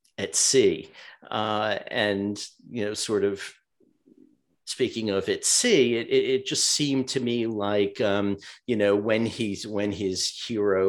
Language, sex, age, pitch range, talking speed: English, male, 50-69, 100-120 Hz, 155 wpm